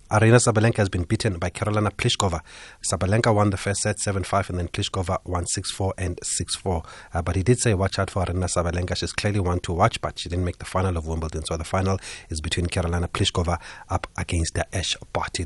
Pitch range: 90-110 Hz